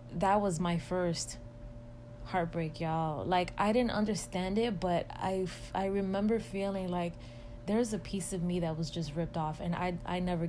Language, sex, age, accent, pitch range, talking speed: English, female, 20-39, American, 145-185 Hz, 175 wpm